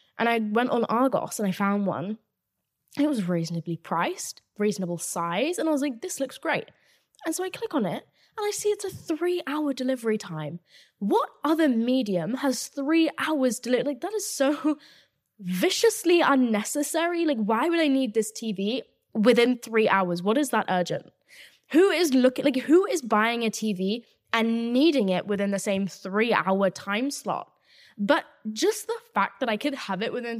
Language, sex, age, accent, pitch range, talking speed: English, female, 10-29, British, 195-290 Hz, 185 wpm